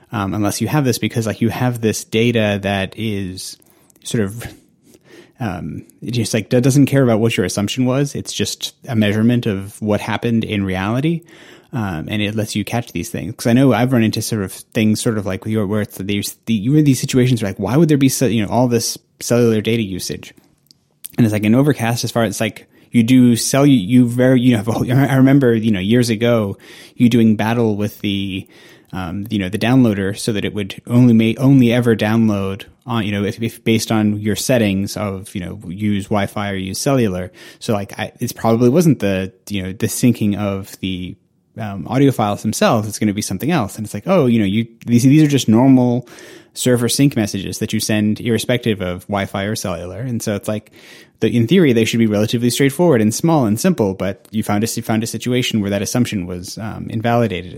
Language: English